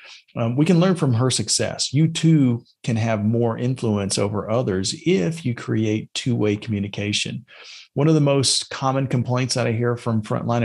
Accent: American